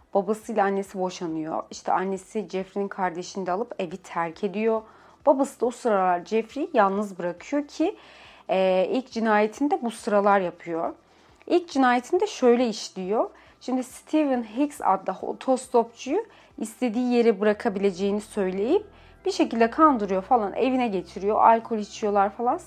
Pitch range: 195-260 Hz